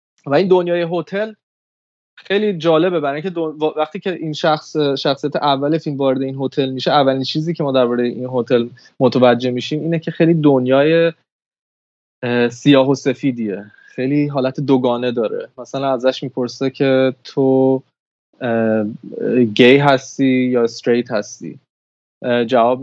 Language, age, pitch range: Persian, 20-39, 125-155 Hz